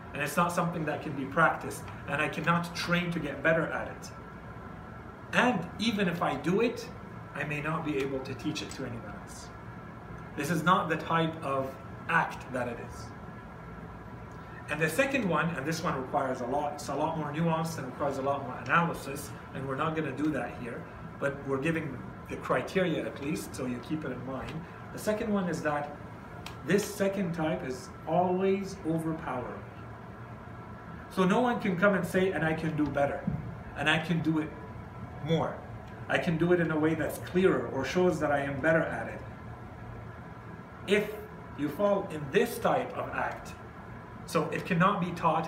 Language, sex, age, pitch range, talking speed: English, male, 40-59, 135-175 Hz, 190 wpm